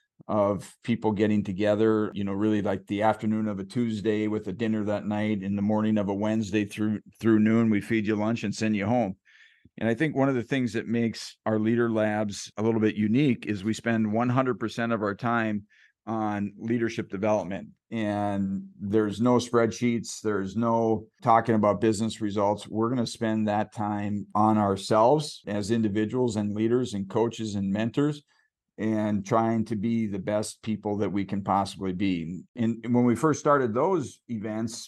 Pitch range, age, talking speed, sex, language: 105-115 Hz, 50-69, 180 wpm, male, English